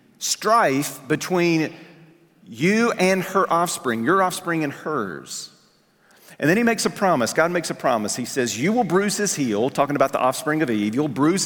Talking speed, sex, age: 185 wpm, male, 40-59